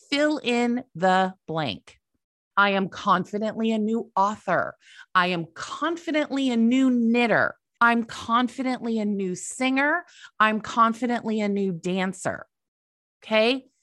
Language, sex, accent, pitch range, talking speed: English, female, American, 185-265 Hz, 115 wpm